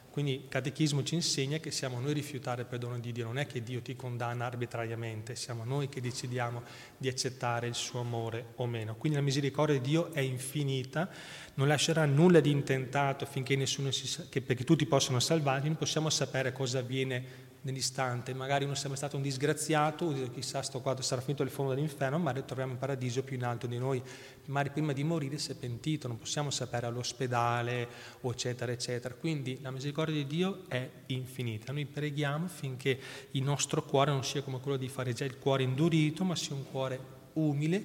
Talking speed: 195 wpm